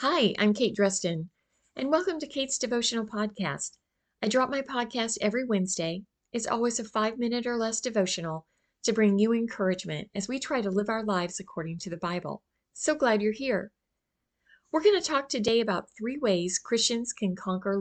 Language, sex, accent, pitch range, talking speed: English, female, American, 175-230 Hz, 180 wpm